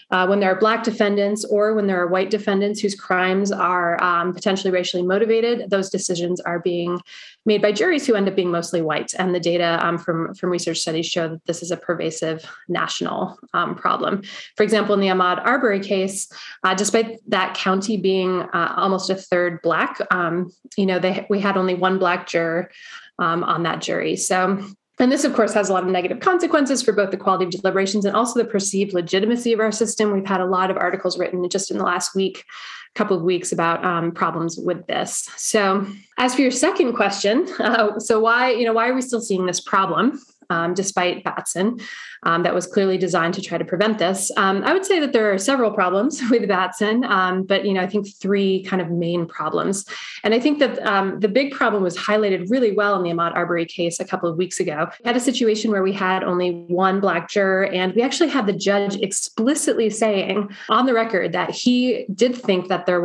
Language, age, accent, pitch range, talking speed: English, 30-49, American, 180-220 Hz, 215 wpm